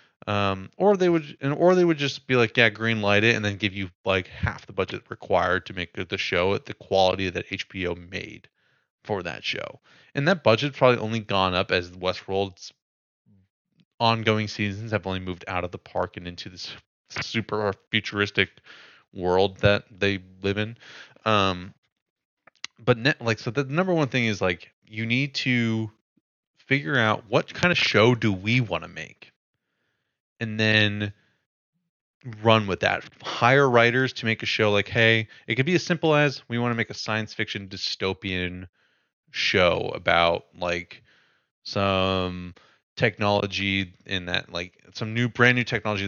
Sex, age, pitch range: male, 20-39, 95-120 Hz